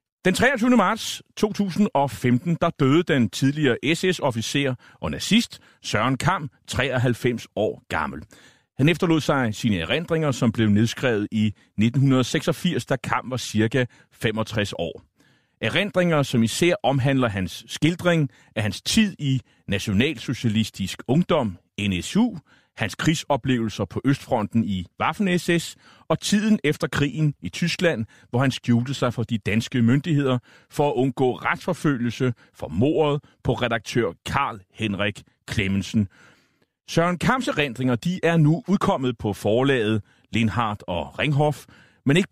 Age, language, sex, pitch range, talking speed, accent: 30-49, Danish, male, 115-165 Hz, 125 wpm, native